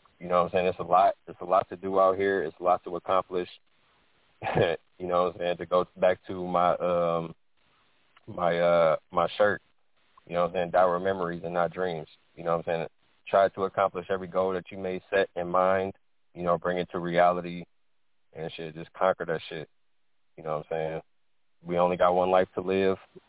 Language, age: English, 20-39